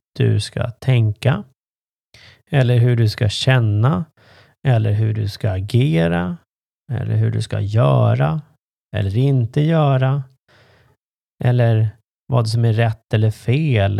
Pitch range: 110-135 Hz